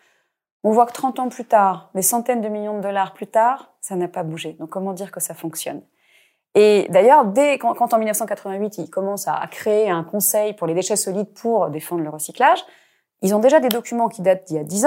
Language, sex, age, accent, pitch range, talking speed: French, female, 30-49, French, 190-255 Hz, 230 wpm